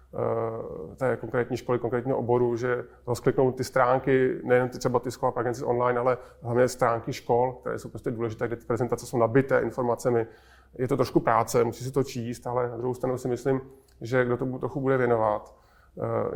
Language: Czech